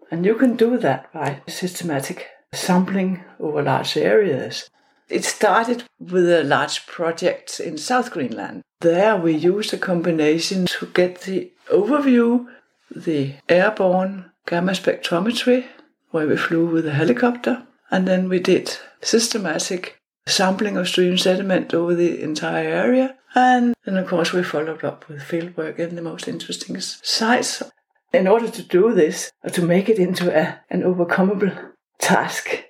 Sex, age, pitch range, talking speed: female, 60-79, 170-225 Hz, 145 wpm